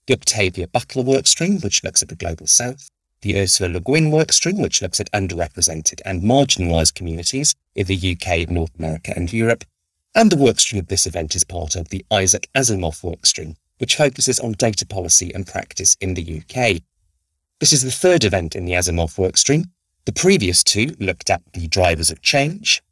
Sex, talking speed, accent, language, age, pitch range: male, 185 wpm, British, English, 30-49, 85-120 Hz